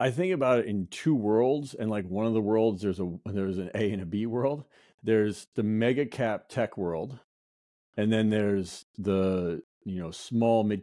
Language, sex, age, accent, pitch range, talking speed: English, male, 40-59, American, 95-120 Hz, 200 wpm